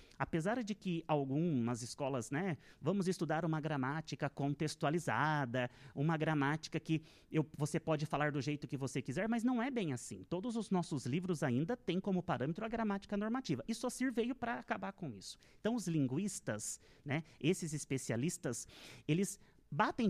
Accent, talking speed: Brazilian, 165 wpm